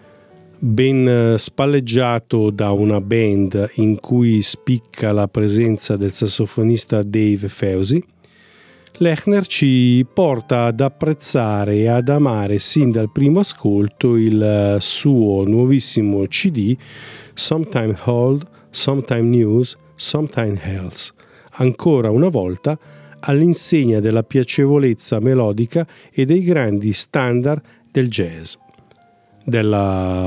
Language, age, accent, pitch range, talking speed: Italian, 40-59, native, 105-145 Hz, 100 wpm